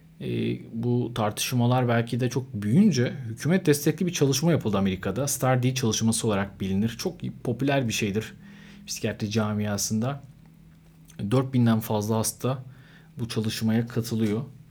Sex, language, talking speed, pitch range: male, Turkish, 120 wpm, 115-145 Hz